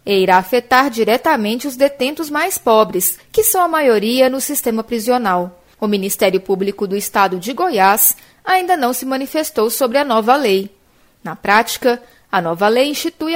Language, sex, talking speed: Portuguese, female, 160 wpm